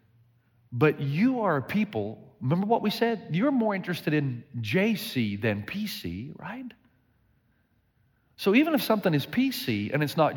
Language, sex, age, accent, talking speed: English, male, 40-59, American, 150 wpm